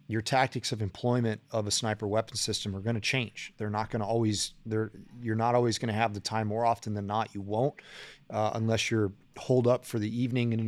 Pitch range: 105-120 Hz